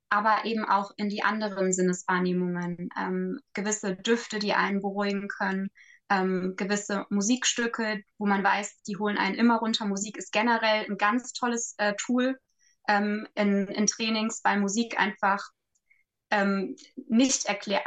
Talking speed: 145 wpm